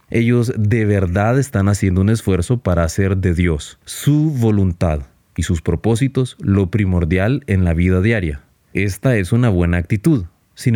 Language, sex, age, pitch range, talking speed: Spanish, male, 30-49, 90-115 Hz, 155 wpm